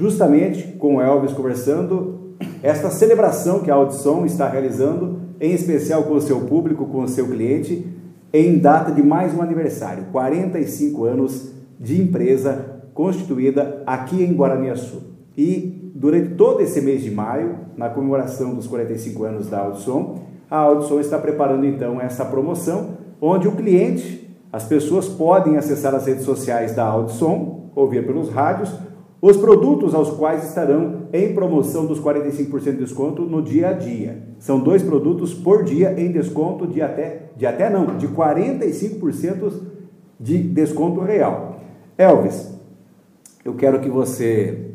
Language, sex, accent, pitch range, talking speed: Portuguese, male, Brazilian, 130-170 Hz, 145 wpm